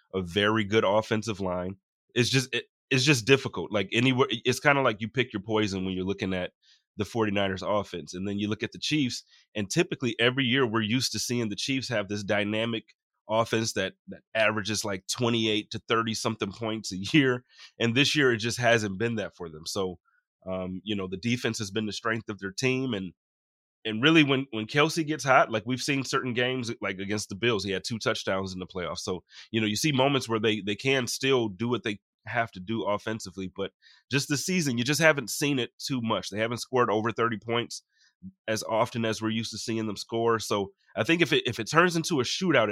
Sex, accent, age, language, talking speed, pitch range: male, American, 30-49, English, 225 wpm, 100-120 Hz